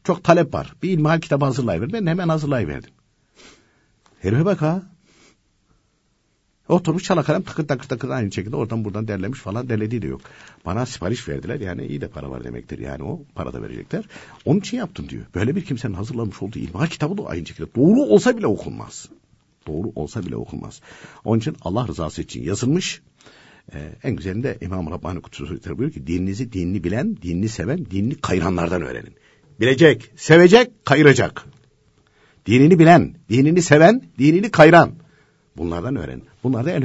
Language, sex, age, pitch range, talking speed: Turkish, male, 60-79, 95-150 Hz, 160 wpm